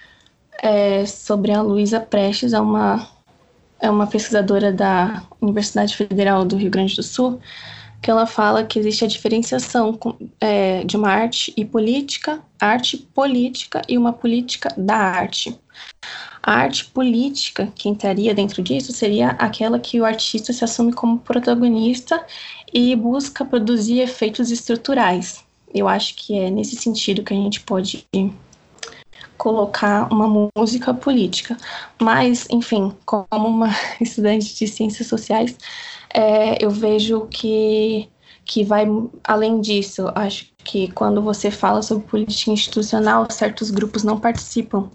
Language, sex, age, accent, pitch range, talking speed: Portuguese, female, 10-29, Brazilian, 205-235 Hz, 130 wpm